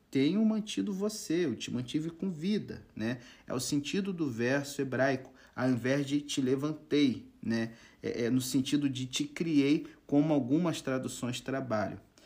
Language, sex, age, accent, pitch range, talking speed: Portuguese, male, 40-59, Brazilian, 115-145 Hz, 155 wpm